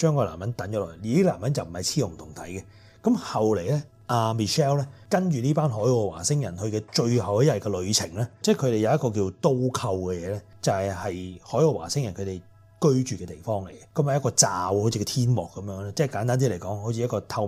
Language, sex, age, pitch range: Chinese, male, 30-49, 95-125 Hz